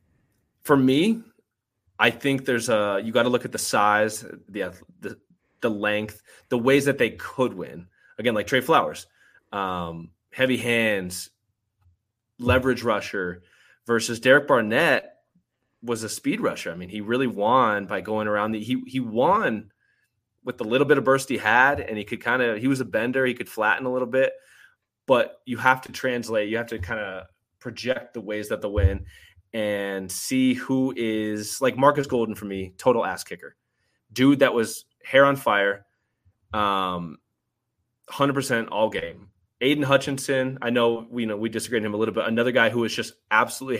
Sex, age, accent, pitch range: male, 20-39, American, 100-125 Hz